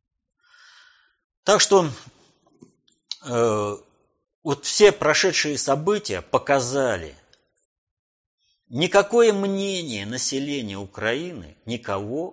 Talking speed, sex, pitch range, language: 65 wpm, male, 105-165 Hz, Russian